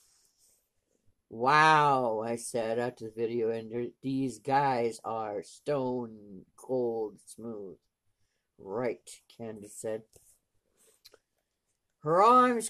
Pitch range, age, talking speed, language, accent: 115-160 Hz, 50-69, 85 wpm, English, American